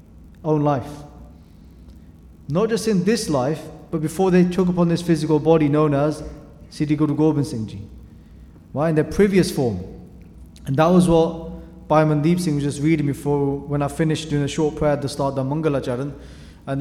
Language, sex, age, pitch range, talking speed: English, male, 20-39, 135-155 Hz, 185 wpm